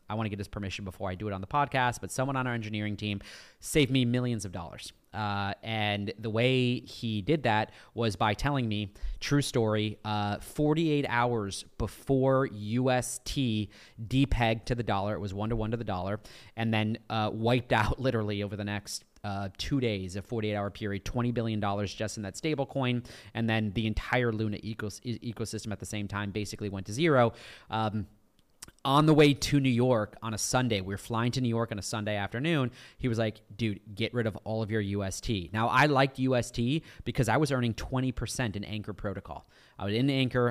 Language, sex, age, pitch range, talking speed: English, male, 30-49, 105-125 Hz, 205 wpm